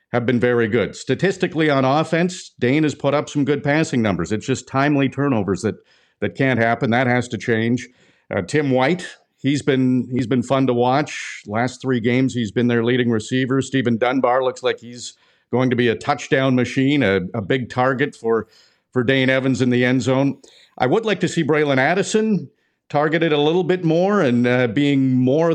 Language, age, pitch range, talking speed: English, 50-69, 120-145 Hz, 195 wpm